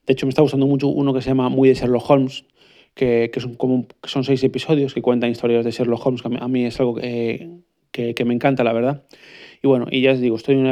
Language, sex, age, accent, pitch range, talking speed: Spanish, male, 20-39, Spanish, 120-135 Hz, 290 wpm